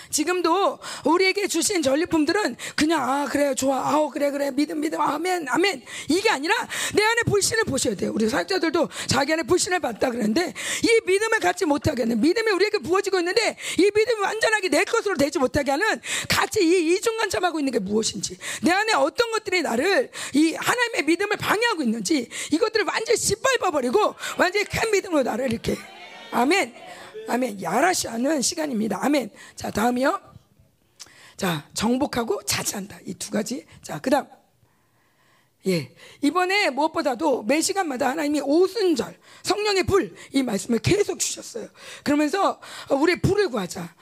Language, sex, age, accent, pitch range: Korean, female, 40-59, native, 275-385 Hz